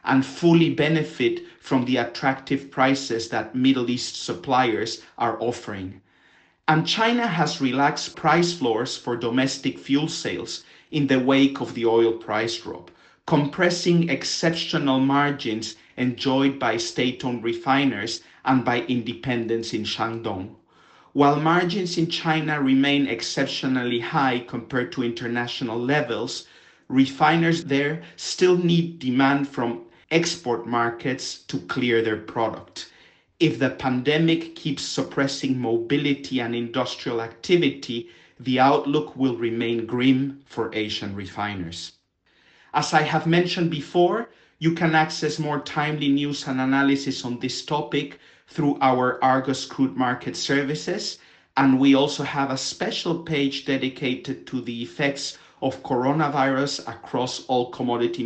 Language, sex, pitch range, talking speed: English, male, 120-150 Hz, 125 wpm